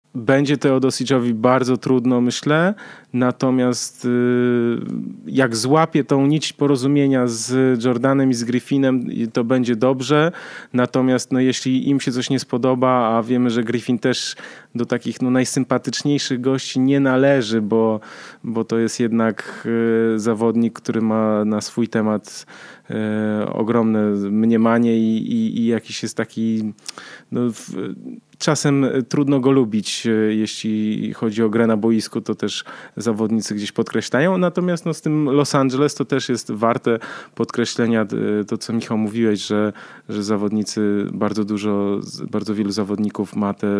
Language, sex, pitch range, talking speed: Polish, male, 110-130 Hz, 130 wpm